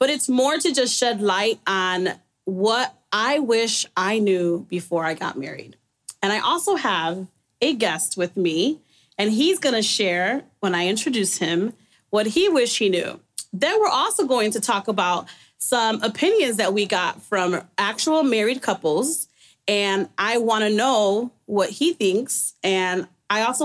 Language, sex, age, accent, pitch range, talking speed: English, female, 30-49, American, 195-275 Hz, 170 wpm